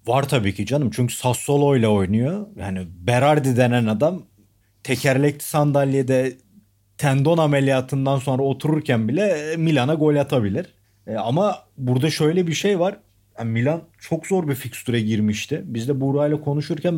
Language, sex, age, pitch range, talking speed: Turkish, male, 40-59, 115-150 Hz, 145 wpm